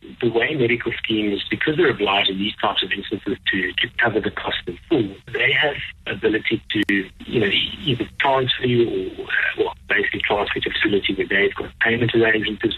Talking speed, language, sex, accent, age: 190 wpm, English, male, American, 50-69